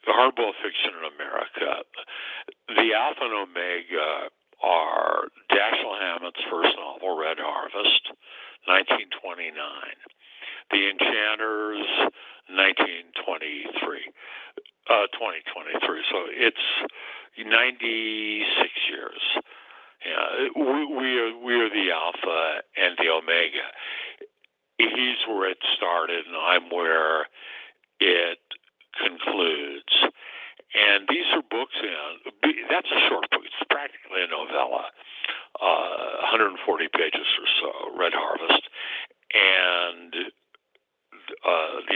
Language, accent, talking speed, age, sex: English, American, 95 wpm, 60-79, male